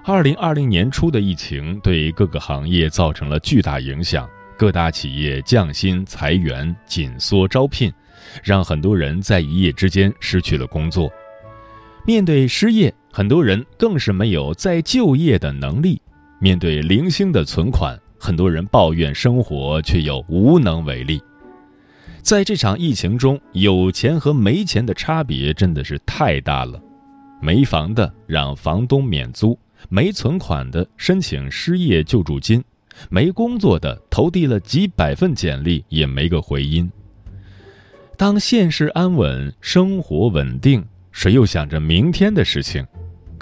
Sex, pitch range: male, 80-130 Hz